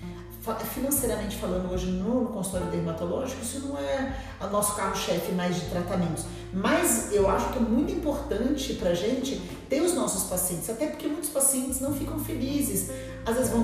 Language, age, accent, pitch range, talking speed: Portuguese, 40-59, Brazilian, 180-250 Hz, 170 wpm